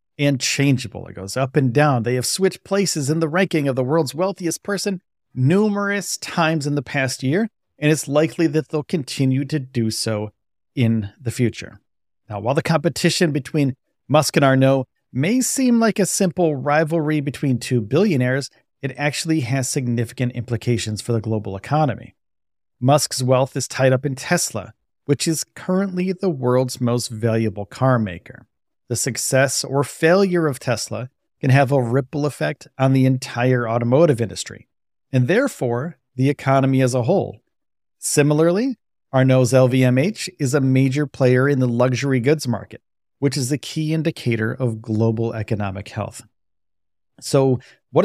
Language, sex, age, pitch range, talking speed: English, male, 40-59, 120-155 Hz, 155 wpm